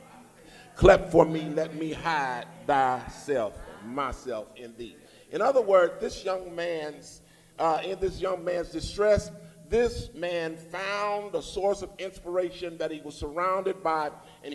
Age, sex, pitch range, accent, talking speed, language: 50-69, male, 160-205 Hz, American, 145 wpm, English